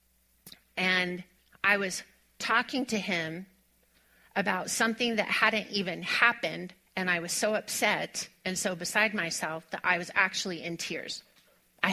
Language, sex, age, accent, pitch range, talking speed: English, female, 30-49, American, 180-225 Hz, 140 wpm